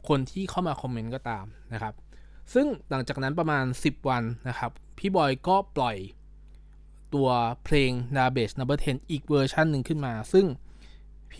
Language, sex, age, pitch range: Thai, male, 20-39, 120-155 Hz